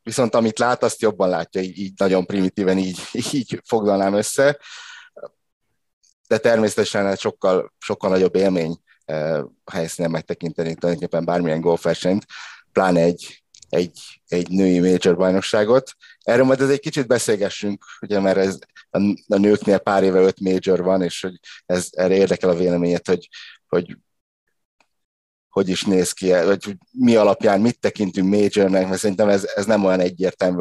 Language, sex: Hungarian, male